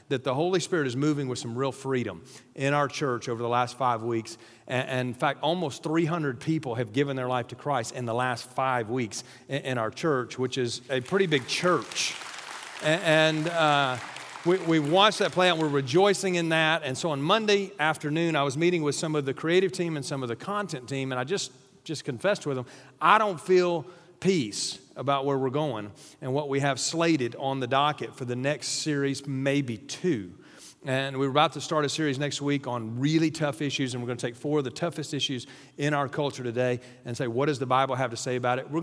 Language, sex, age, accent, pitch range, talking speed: English, male, 40-59, American, 125-160 Hz, 225 wpm